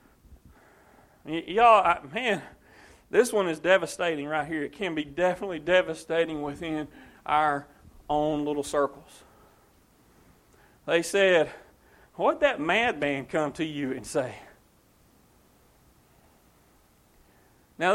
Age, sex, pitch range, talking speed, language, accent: 40-59, male, 160-220 Hz, 95 wpm, English, American